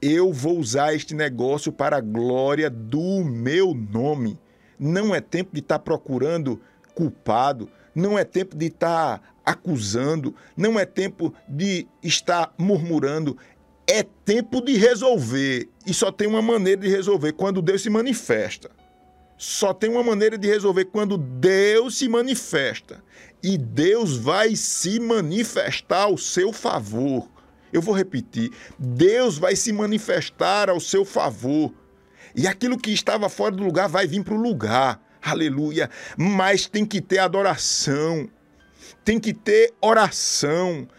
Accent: Brazilian